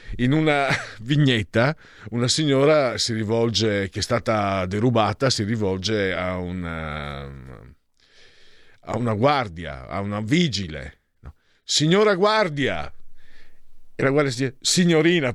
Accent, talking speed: native, 110 wpm